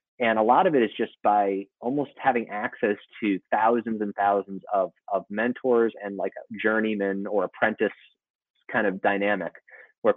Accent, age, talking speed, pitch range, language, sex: American, 30-49, 160 wpm, 100-120 Hz, English, male